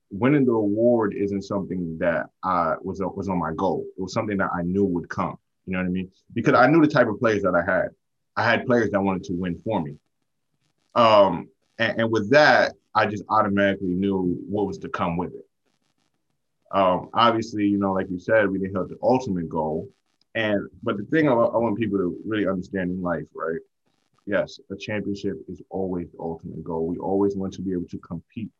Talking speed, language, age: 215 wpm, English, 20-39